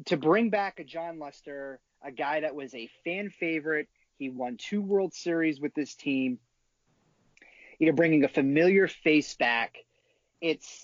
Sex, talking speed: male, 155 wpm